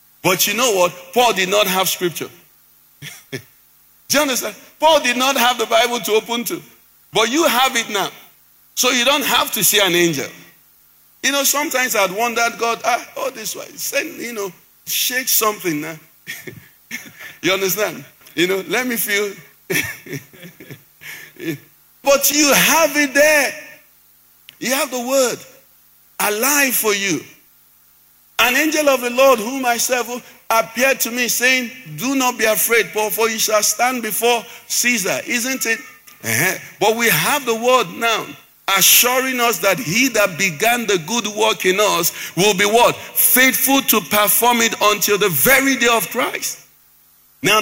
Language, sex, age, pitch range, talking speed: English, male, 50-69, 195-255 Hz, 160 wpm